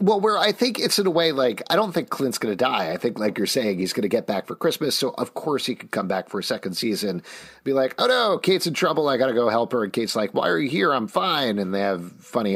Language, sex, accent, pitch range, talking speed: English, male, American, 100-155 Hz, 310 wpm